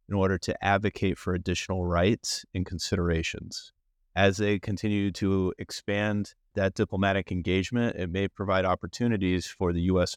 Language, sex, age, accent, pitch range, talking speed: English, male, 30-49, American, 90-105 Hz, 140 wpm